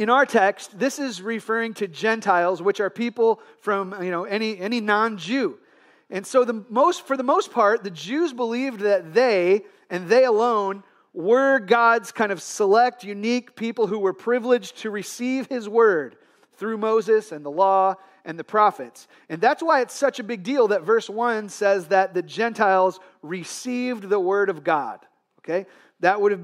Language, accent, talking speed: English, American, 180 wpm